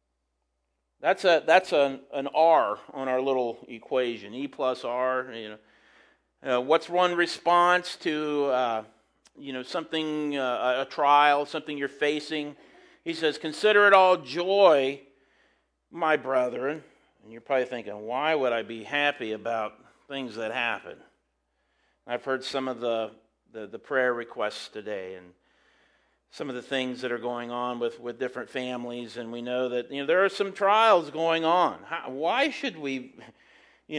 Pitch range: 120-195 Hz